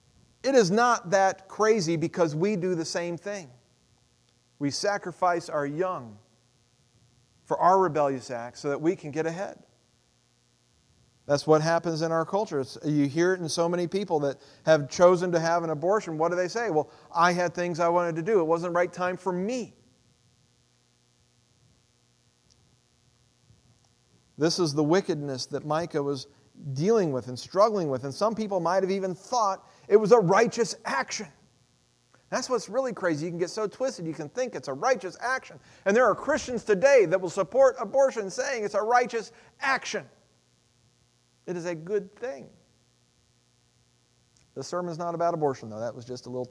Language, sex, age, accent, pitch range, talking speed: English, male, 40-59, American, 125-190 Hz, 175 wpm